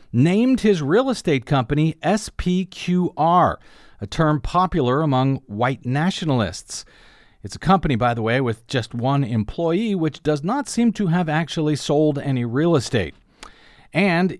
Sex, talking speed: male, 140 wpm